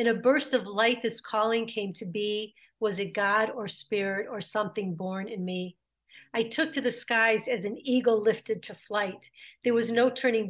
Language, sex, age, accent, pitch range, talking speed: English, female, 50-69, American, 200-230 Hz, 200 wpm